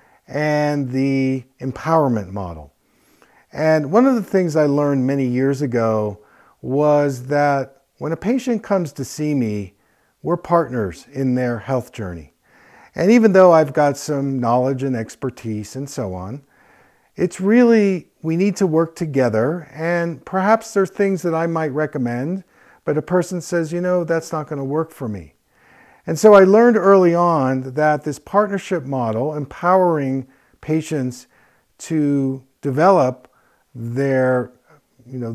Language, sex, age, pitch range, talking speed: English, male, 50-69, 125-170 Hz, 150 wpm